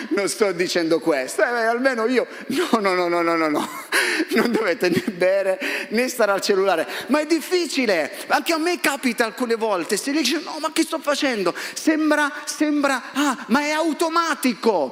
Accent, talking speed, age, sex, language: native, 175 wpm, 30-49, male, Italian